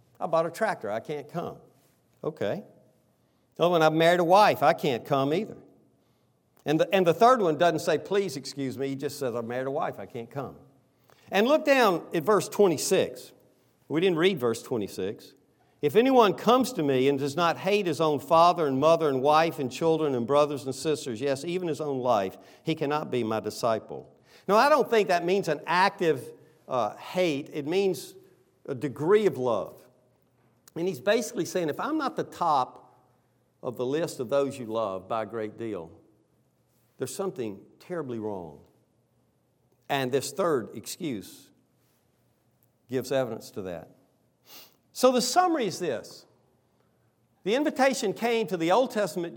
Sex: male